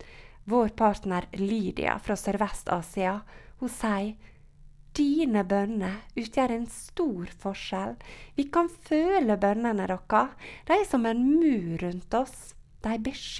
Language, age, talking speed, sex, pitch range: English, 30-49, 120 wpm, female, 185-245 Hz